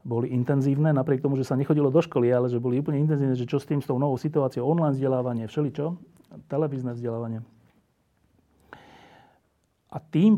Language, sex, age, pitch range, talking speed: Slovak, male, 40-59, 120-145 Hz, 175 wpm